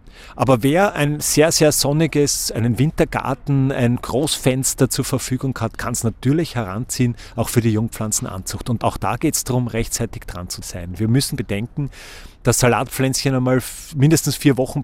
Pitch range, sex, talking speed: 115-135 Hz, male, 160 wpm